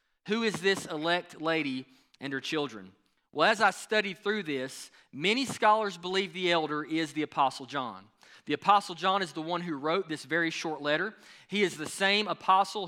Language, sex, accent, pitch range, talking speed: English, male, American, 155-200 Hz, 185 wpm